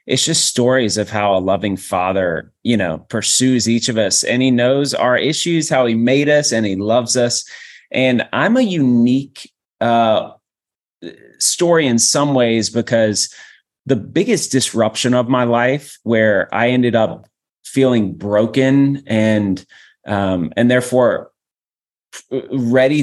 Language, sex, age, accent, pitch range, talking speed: English, male, 30-49, American, 110-130 Hz, 140 wpm